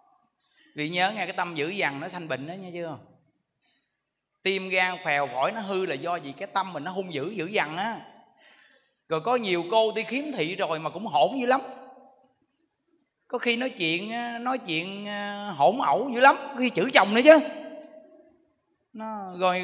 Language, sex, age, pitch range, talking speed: Vietnamese, male, 20-39, 175-255 Hz, 185 wpm